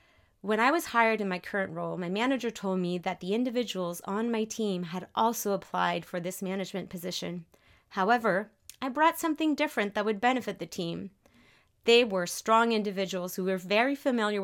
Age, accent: 30-49, American